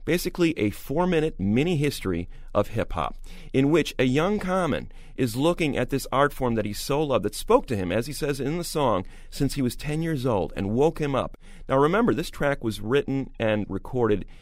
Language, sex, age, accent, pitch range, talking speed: English, male, 40-59, American, 105-145 Hz, 205 wpm